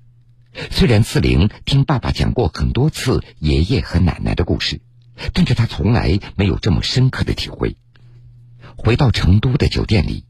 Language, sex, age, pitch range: Chinese, male, 50-69, 100-125 Hz